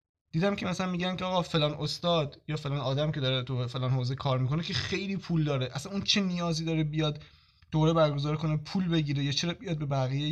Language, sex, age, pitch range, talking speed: Persian, male, 20-39, 130-165 Hz, 220 wpm